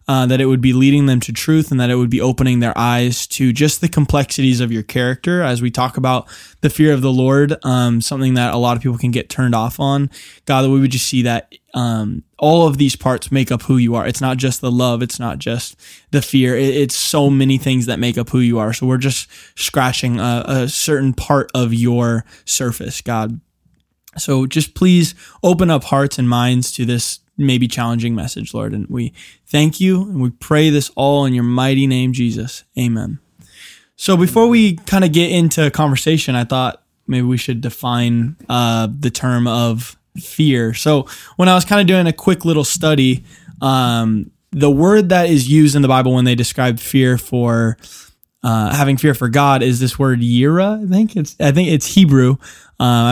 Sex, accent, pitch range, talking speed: male, American, 120-150 Hz, 210 wpm